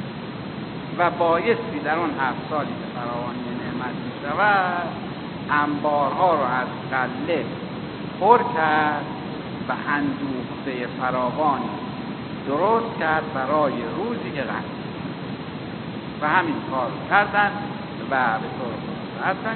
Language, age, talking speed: Persian, 60-79, 110 wpm